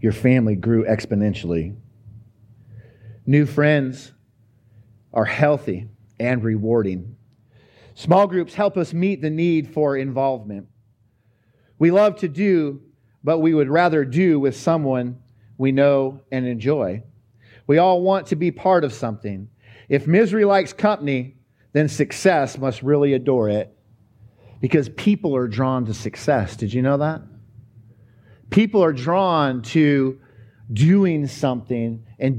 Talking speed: 130 wpm